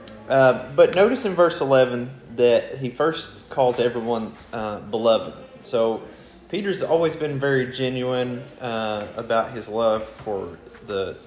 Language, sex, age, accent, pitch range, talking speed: English, male, 30-49, American, 105-130 Hz, 135 wpm